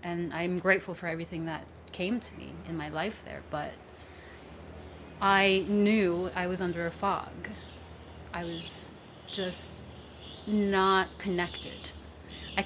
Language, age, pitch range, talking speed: English, 30-49, 165-200 Hz, 130 wpm